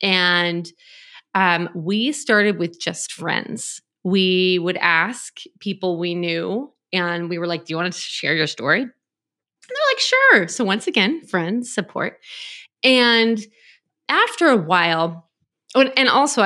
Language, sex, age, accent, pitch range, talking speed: English, female, 20-39, American, 170-240 Hz, 140 wpm